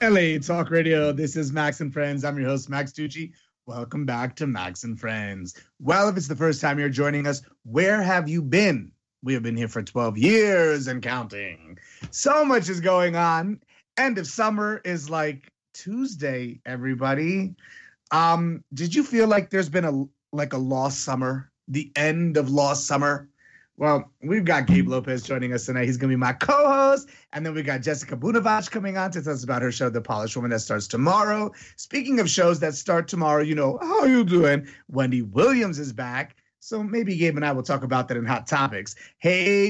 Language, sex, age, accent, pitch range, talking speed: English, male, 30-49, American, 130-185 Hz, 200 wpm